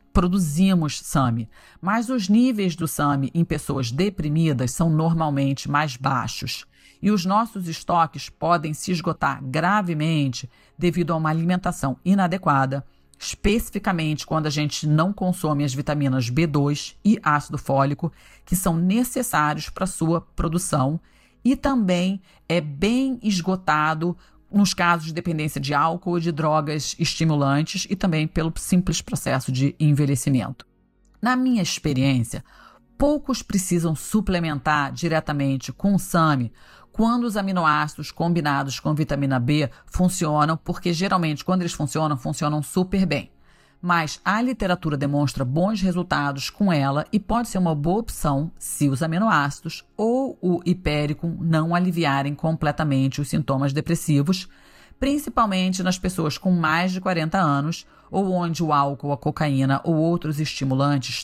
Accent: Brazilian